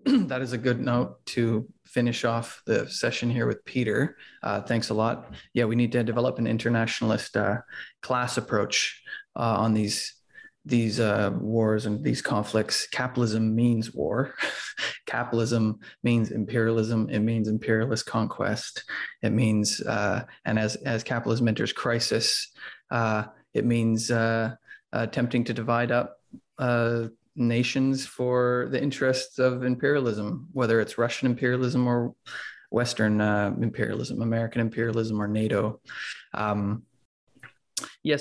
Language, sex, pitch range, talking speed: English, male, 110-125 Hz, 130 wpm